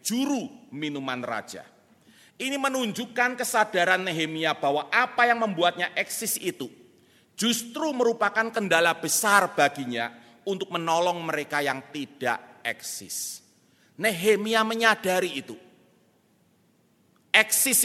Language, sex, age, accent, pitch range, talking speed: Indonesian, male, 40-59, native, 135-210 Hz, 95 wpm